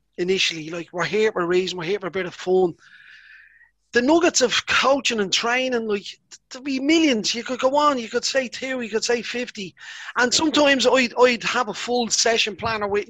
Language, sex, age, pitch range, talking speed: English, male, 30-49, 195-240 Hz, 210 wpm